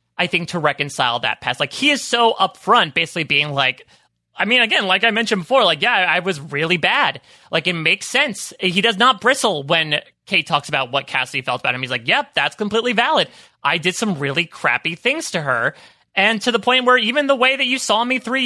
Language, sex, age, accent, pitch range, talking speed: English, male, 30-49, American, 145-215 Hz, 230 wpm